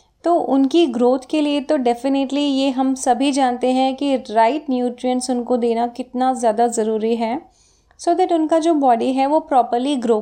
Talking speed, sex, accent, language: 190 wpm, female, native, Hindi